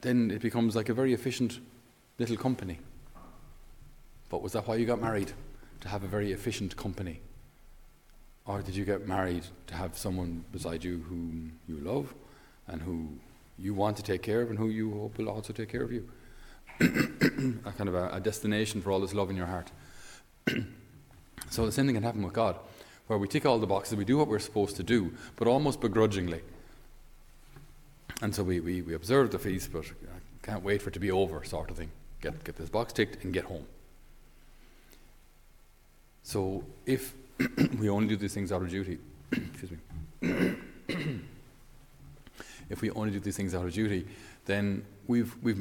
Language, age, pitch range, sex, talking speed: English, 30-49, 90-110 Hz, male, 185 wpm